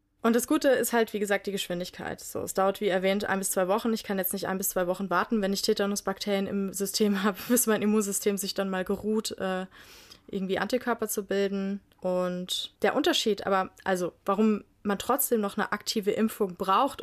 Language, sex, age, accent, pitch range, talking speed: German, female, 20-39, German, 190-220 Hz, 205 wpm